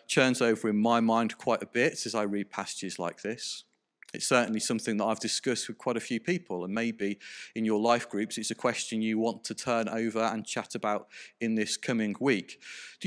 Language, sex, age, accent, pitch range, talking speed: English, male, 40-59, British, 115-180 Hz, 215 wpm